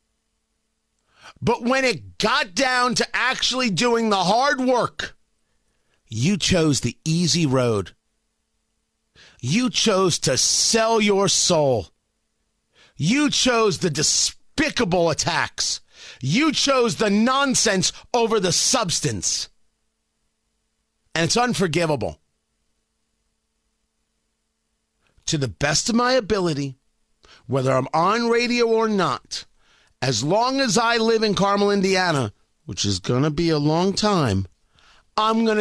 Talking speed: 115 wpm